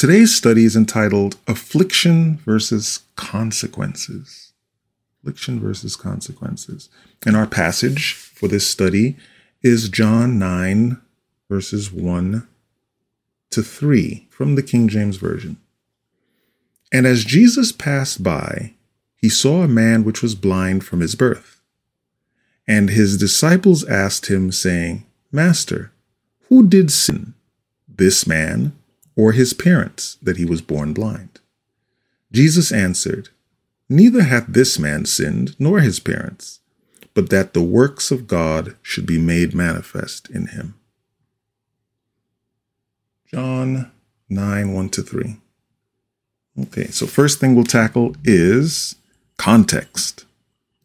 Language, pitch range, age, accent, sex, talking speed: English, 100-130 Hz, 40-59, American, male, 115 wpm